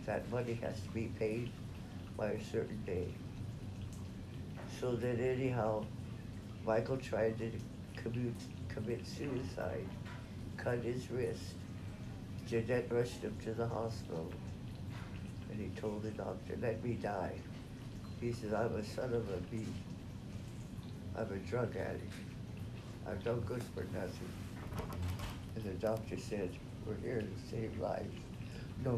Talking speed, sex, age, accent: 130 wpm, male, 60-79, American